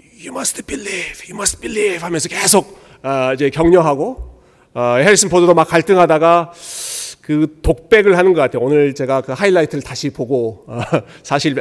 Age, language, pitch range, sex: 40-59, Korean, 135-195 Hz, male